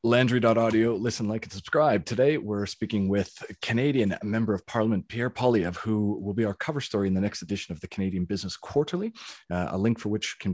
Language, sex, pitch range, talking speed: English, male, 90-110 Hz, 205 wpm